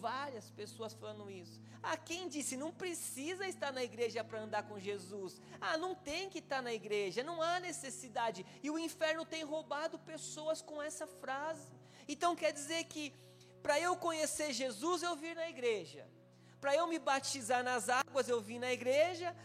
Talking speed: 175 wpm